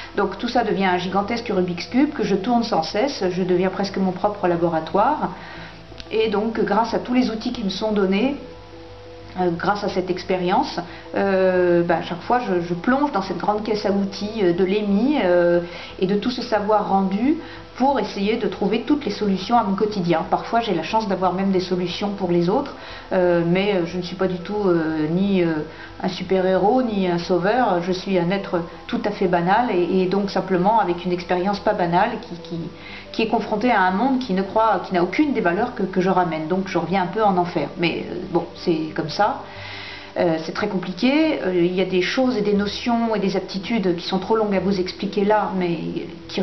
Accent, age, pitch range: French, 50-69, 175-210 Hz